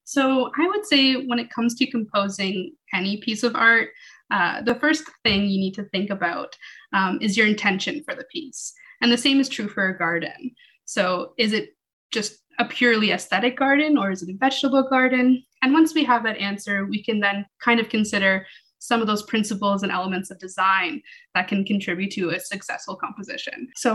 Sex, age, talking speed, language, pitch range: female, 20-39, 200 wpm, English, 200-255 Hz